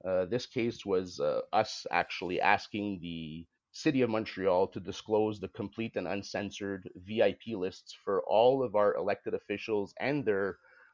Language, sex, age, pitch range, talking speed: English, male, 30-49, 95-120 Hz, 155 wpm